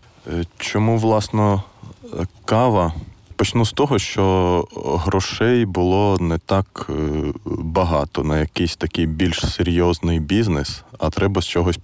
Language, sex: Ukrainian, male